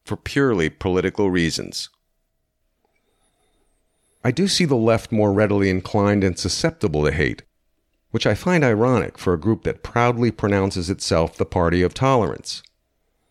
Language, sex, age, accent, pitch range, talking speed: English, male, 50-69, American, 90-125 Hz, 140 wpm